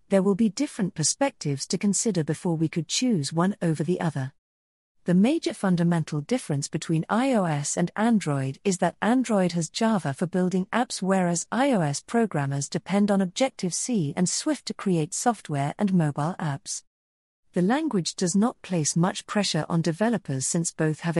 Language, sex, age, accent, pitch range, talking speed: English, female, 40-59, British, 155-215 Hz, 160 wpm